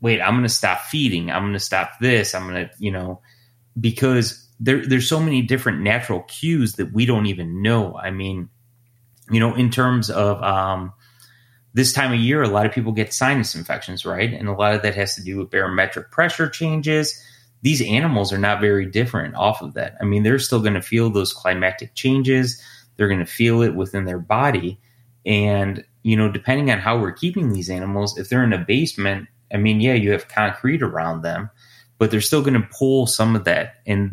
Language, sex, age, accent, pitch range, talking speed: English, male, 30-49, American, 100-125 Hz, 210 wpm